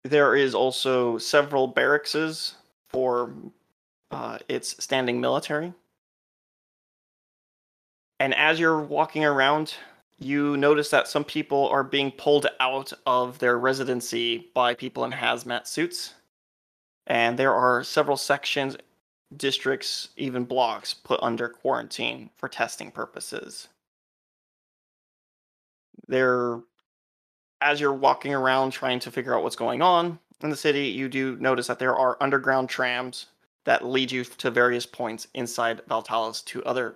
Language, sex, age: English, male, 20-39